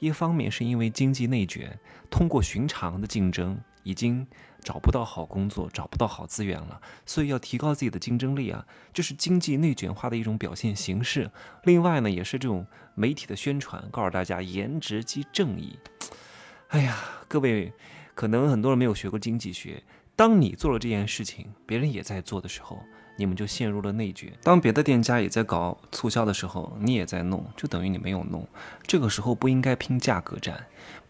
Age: 20-39